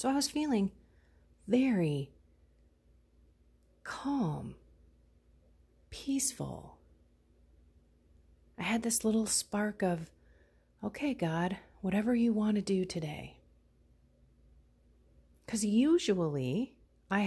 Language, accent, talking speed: English, American, 85 wpm